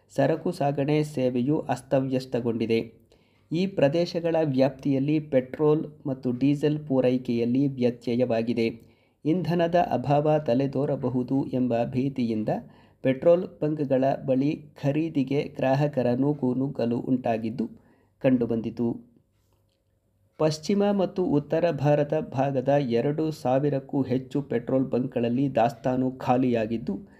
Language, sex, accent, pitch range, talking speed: Kannada, male, native, 120-145 Hz, 80 wpm